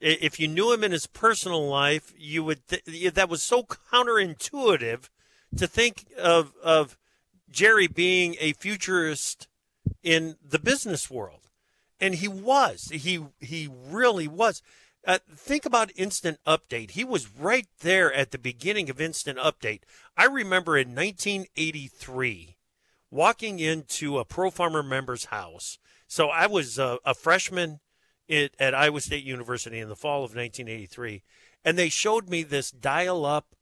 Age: 40-59